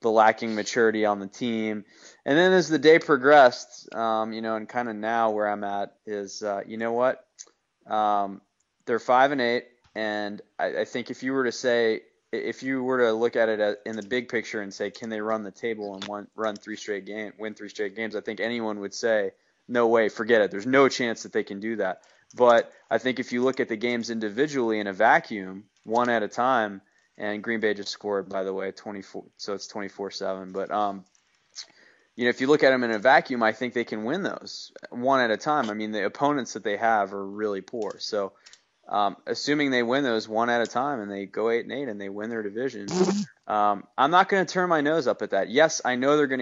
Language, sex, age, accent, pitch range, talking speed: English, male, 20-39, American, 105-125 Hz, 235 wpm